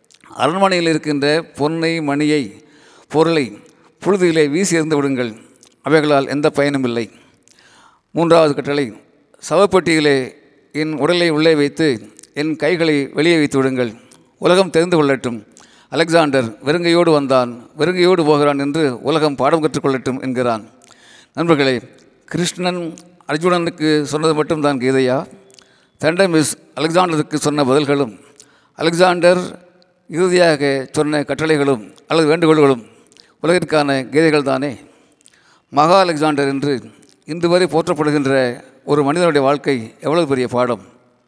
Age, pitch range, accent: 50-69, 135-160 Hz, native